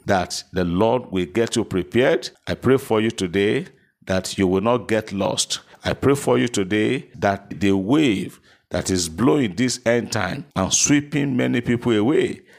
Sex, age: male, 50-69